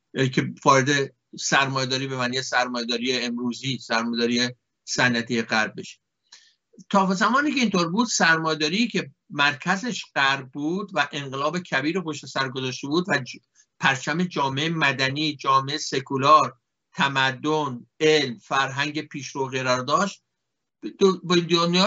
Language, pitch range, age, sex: Persian, 145-190 Hz, 50-69, male